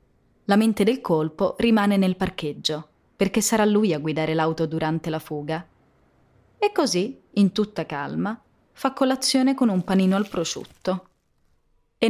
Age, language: 30-49, Italian